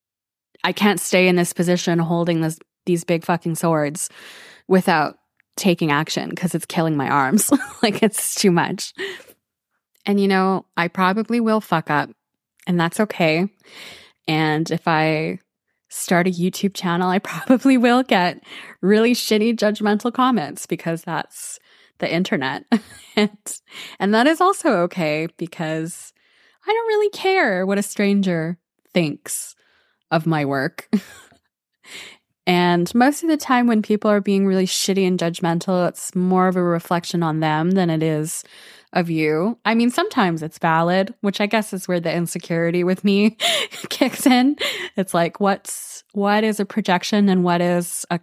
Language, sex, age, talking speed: English, female, 20-39, 155 wpm